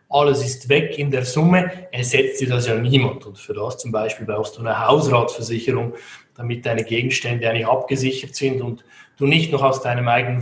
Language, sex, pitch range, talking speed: German, male, 120-140 Hz, 190 wpm